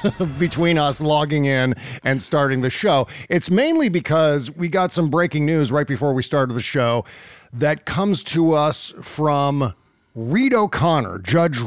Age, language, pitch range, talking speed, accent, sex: 40-59, English, 130-165 Hz, 155 wpm, American, male